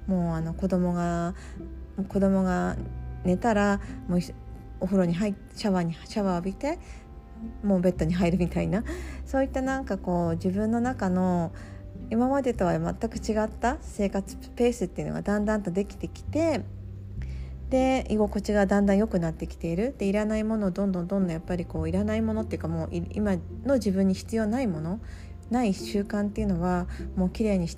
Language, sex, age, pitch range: Japanese, female, 40-59, 165-205 Hz